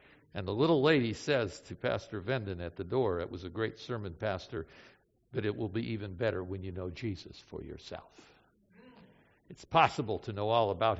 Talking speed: 190 wpm